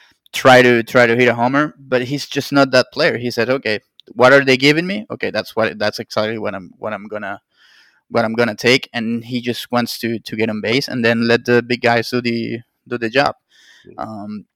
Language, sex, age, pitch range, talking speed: English, male, 20-39, 115-130 Hz, 230 wpm